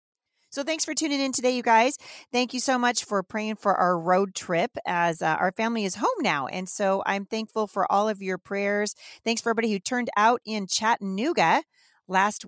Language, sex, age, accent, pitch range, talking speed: English, female, 40-59, American, 175-225 Hz, 205 wpm